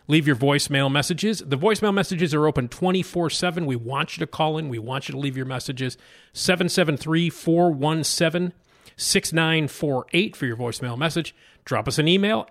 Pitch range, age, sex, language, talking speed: 125-170 Hz, 40-59, male, English, 155 wpm